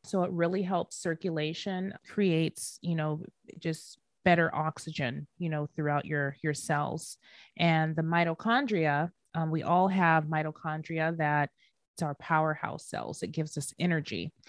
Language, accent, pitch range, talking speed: English, American, 155-180 Hz, 140 wpm